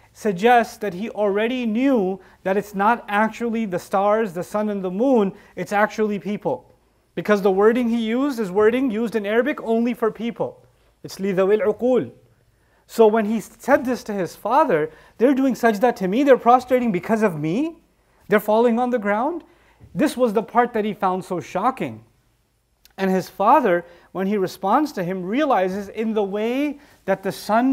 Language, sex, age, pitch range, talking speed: English, male, 30-49, 195-255 Hz, 175 wpm